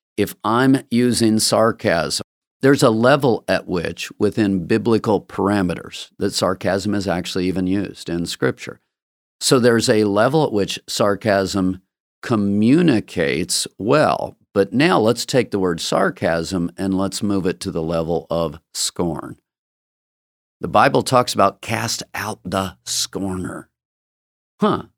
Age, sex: 50-69, male